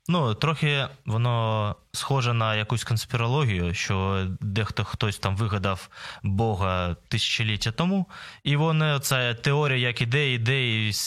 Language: Ukrainian